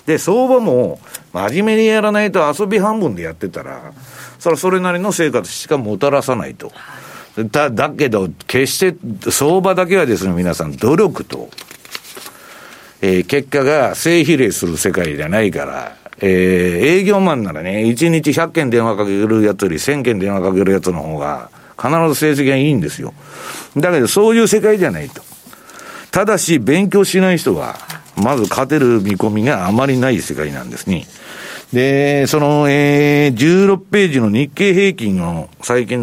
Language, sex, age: Japanese, male, 50-69